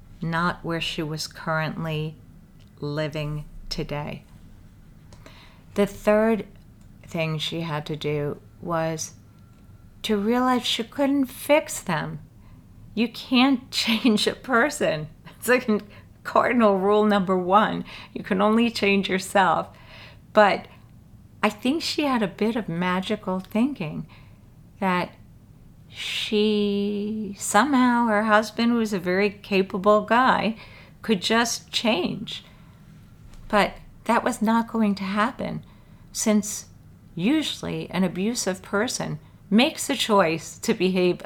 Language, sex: English, female